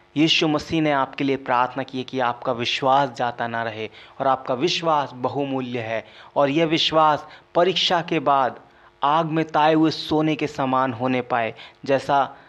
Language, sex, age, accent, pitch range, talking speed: Hindi, male, 30-49, native, 130-160 Hz, 170 wpm